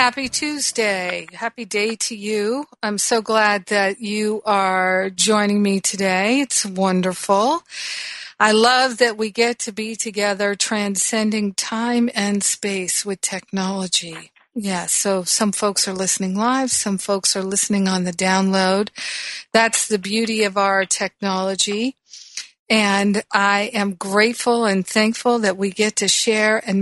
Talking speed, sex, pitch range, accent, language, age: 140 wpm, female, 195-225 Hz, American, English, 50-69